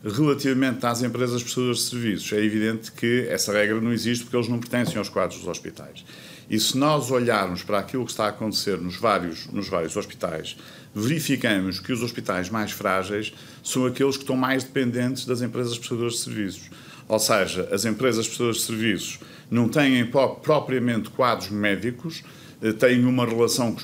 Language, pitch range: Portuguese, 110-130 Hz